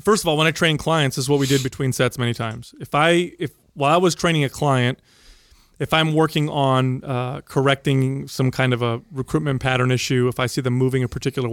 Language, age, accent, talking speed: English, 30-49, American, 235 wpm